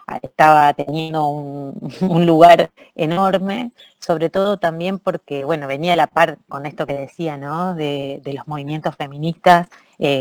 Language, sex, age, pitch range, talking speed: Spanish, female, 30-49, 145-175 Hz, 155 wpm